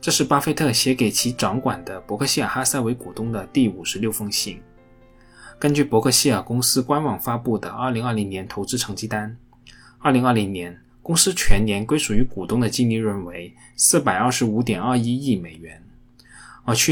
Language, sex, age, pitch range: Chinese, male, 20-39, 105-125 Hz